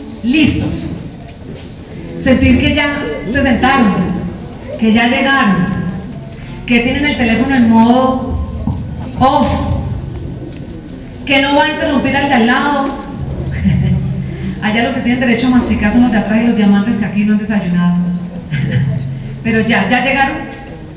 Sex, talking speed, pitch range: female, 135 wpm, 215-265 Hz